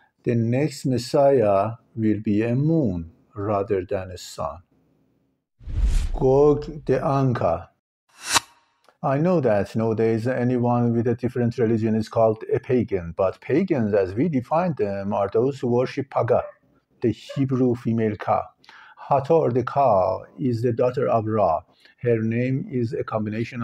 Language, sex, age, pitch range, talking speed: English, male, 50-69, 110-135 Hz, 140 wpm